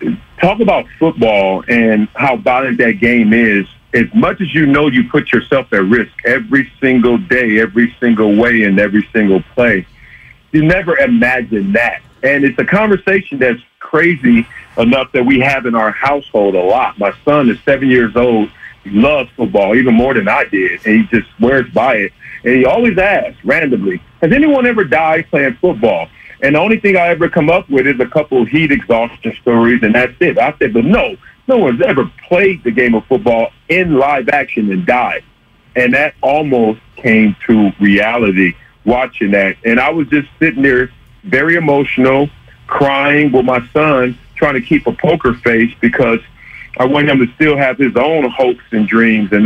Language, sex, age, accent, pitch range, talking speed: English, male, 50-69, American, 115-150 Hz, 185 wpm